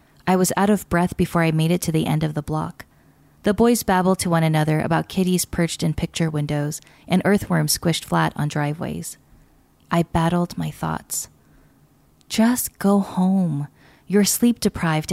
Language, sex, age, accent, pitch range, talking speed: English, female, 20-39, American, 160-200 Hz, 170 wpm